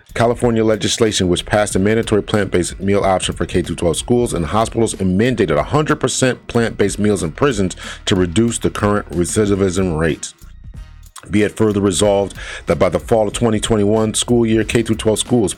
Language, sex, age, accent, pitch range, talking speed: English, male, 40-59, American, 90-115 Hz, 160 wpm